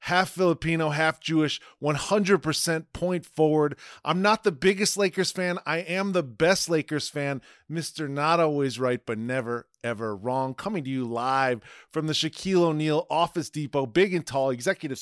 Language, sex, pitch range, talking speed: English, male, 140-185 Hz, 165 wpm